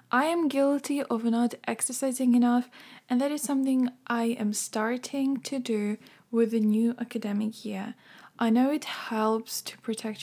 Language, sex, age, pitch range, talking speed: English, female, 10-29, 220-265 Hz, 160 wpm